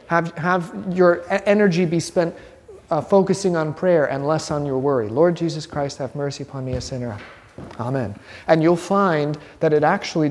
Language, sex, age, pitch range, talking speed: English, male, 30-49, 135-200 Hz, 180 wpm